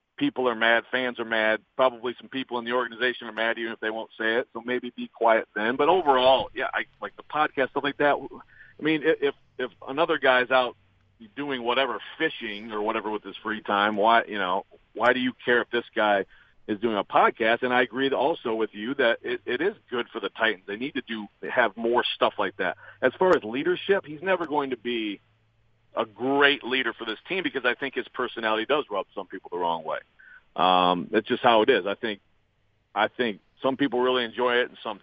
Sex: male